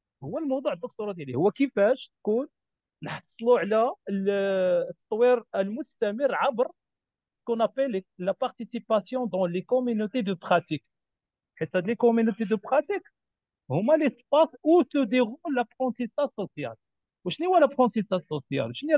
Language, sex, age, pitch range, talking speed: French, male, 50-69, 200-255 Hz, 90 wpm